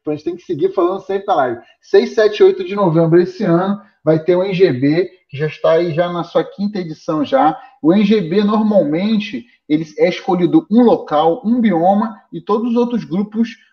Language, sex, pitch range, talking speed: Portuguese, male, 175-230 Hz, 200 wpm